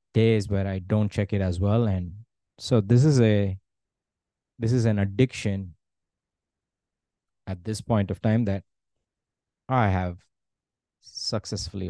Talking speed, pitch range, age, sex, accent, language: 130 wpm, 95-115 Hz, 20-39, male, Indian, English